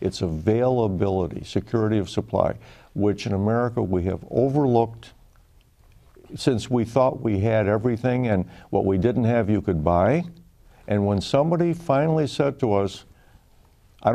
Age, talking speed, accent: 60-79, 140 wpm, American